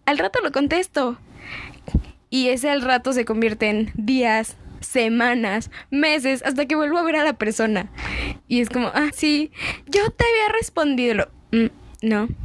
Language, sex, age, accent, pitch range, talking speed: Spanish, female, 10-29, Mexican, 220-290 Hz, 160 wpm